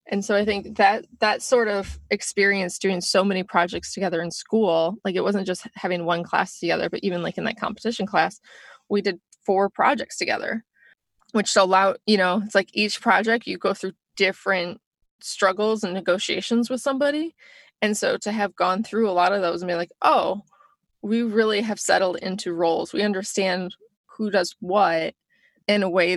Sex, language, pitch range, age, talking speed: female, English, 185-220 Hz, 20-39, 185 wpm